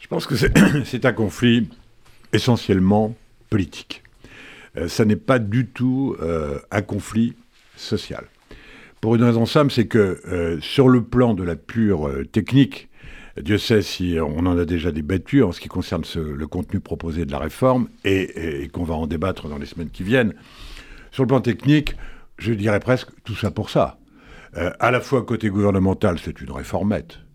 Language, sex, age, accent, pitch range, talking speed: French, male, 70-89, French, 95-130 Hz, 180 wpm